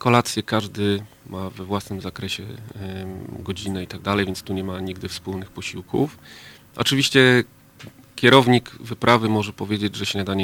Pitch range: 95-115 Hz